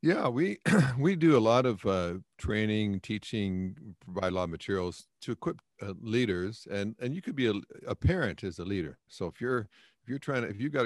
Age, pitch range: 50-69, 90-110 Hz